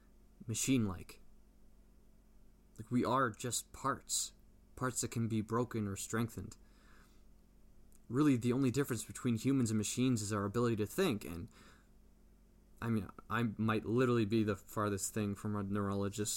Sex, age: male, 20-39